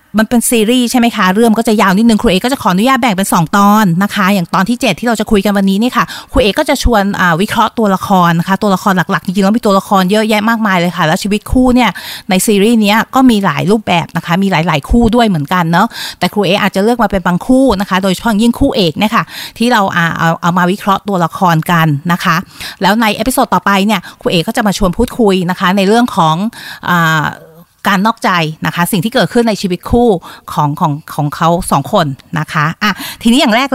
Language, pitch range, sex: Thai, 175-230 Hz, female